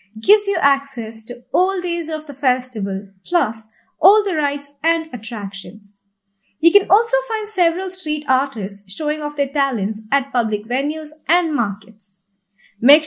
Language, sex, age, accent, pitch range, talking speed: English, female, 20-39, Indian, 200-295 Hz, 145 wpm